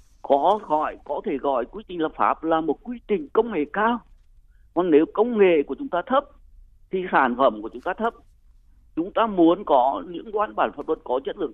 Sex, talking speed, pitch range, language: male, 225 wpm, 160-240 Hz, Vietnamese